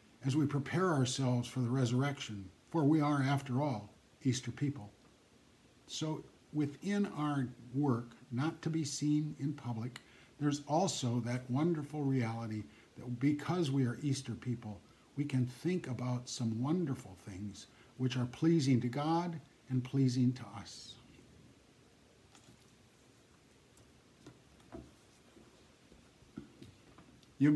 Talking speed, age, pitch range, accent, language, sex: 115 wpm, 60-79, 120-145 Hz, American, English, male